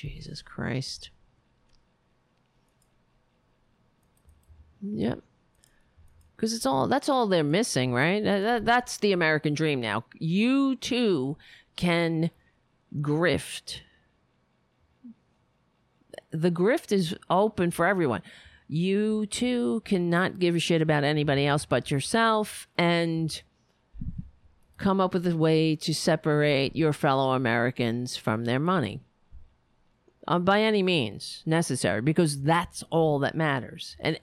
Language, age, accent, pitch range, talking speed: English, 50-69, American, 140-190 Hz, 105 wpm